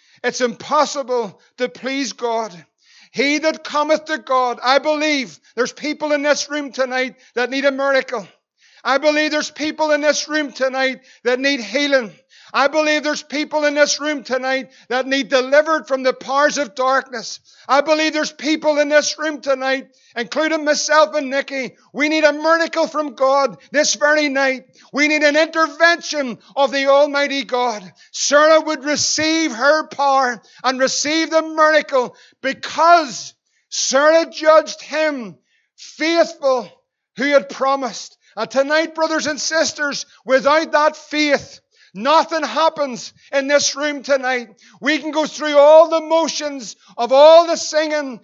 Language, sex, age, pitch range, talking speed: English, male, 50-69, 260-310 Hz, 150 wpm